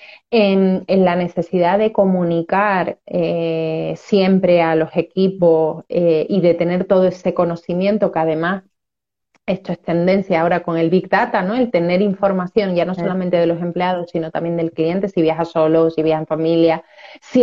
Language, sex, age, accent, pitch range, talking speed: Spanish, female, 30-49, Spanish, 165-190 Hz, 170 wpm